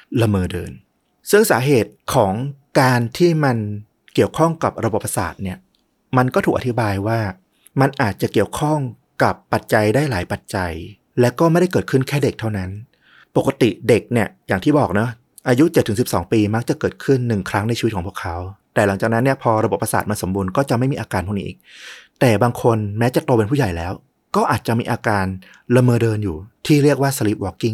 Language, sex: Thai, male